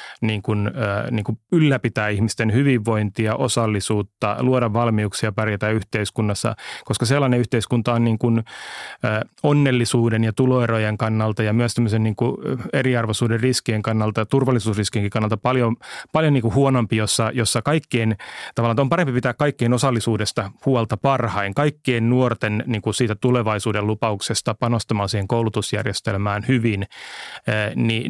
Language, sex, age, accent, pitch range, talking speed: Finnish, male, 30-49, native, 105-125 Hz, 125 wpm